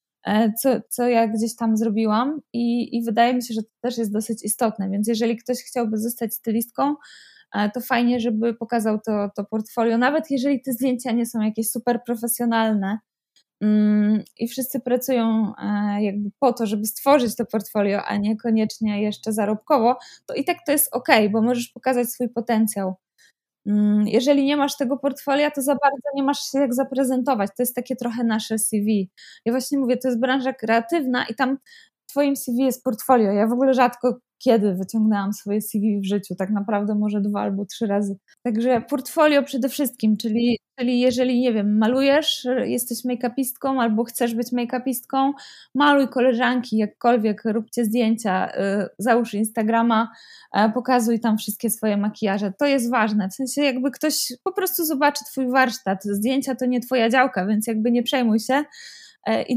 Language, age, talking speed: Polish, 20-39, 165 wpm